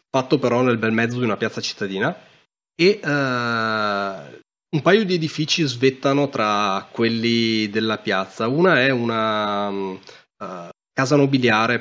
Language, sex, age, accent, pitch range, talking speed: Italian, male, 20-39, native, 110-130 Hz, 135 wpm